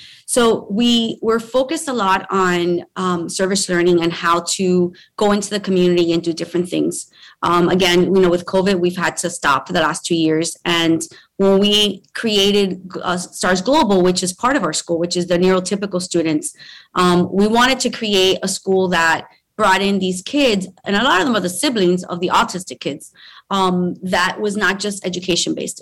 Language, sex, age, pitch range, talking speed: English, female, 30-49, 175-205 Hz, 195 wpm